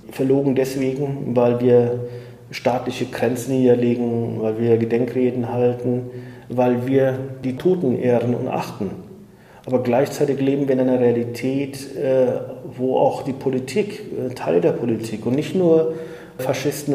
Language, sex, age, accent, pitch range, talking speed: German, male, 40-59, German, 125-170 Hz, 125 wpm